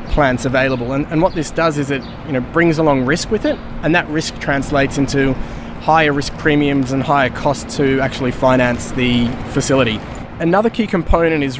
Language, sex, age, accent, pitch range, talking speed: English, male, 20-39, Australian, 130-155 Hz, 185 wpm